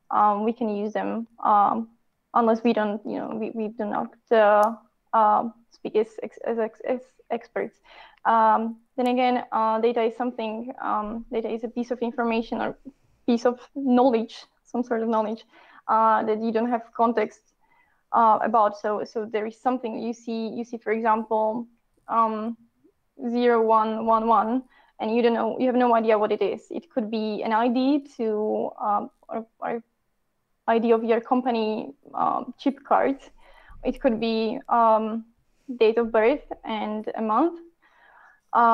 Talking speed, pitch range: 165 wpm, 220-245 Hz